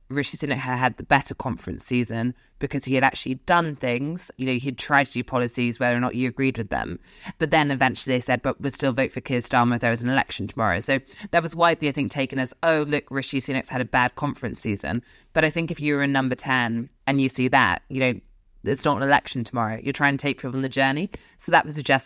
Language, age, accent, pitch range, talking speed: English, 20-39, British, 120-145 Hz, 255 wpm